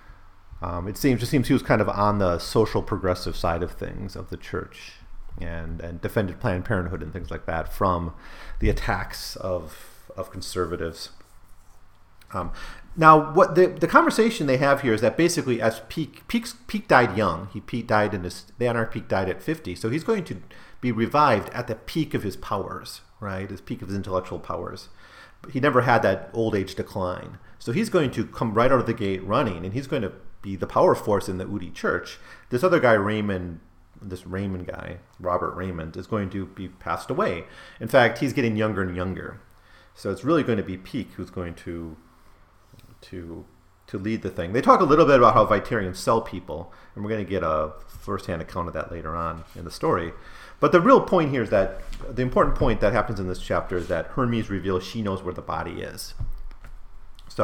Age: 40-59